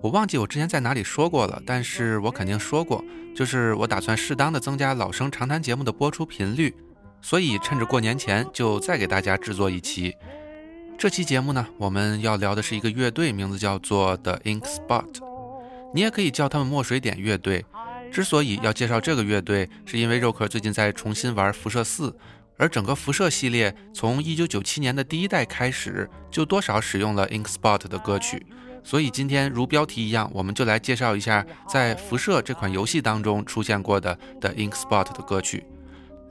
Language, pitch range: Chinese, 100-145 Hz